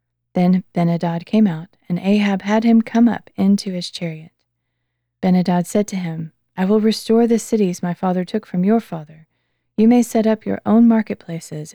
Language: English